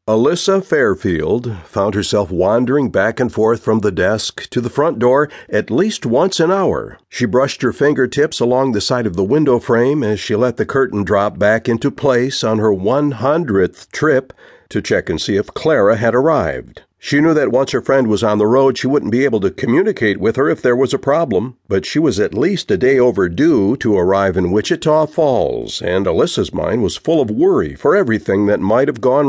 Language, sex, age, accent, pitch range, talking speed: English, male, 50-69, American, 105-135 Hz, 205 wpm